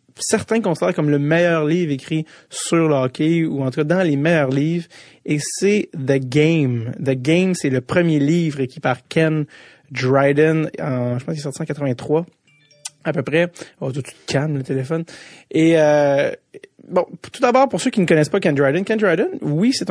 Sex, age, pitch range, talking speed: male, 30-49, 140-175 Hz, 200 wpm